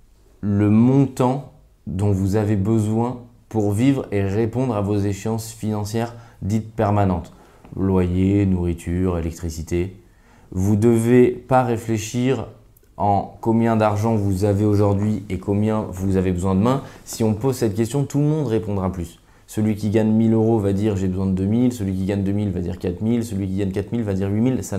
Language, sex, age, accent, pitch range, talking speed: French, male, 20-39, French, 100-120 Hz, 175 wpm